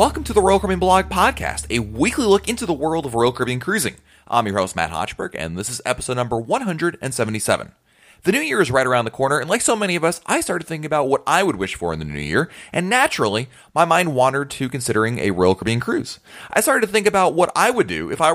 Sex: male